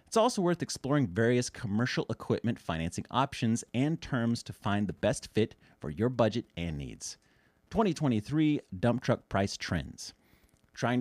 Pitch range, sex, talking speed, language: 105-150 Hz, male, 145 wpm, English